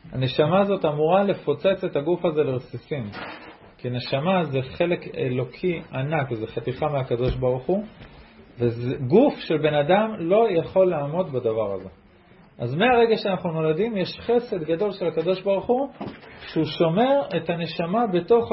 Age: 40-59